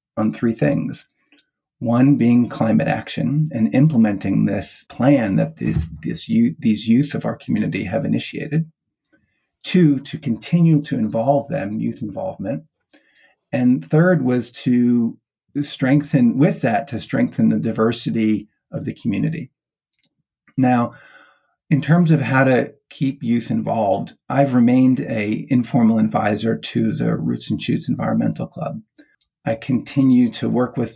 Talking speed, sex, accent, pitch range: 130 wpm, male, American, 110-140 Hz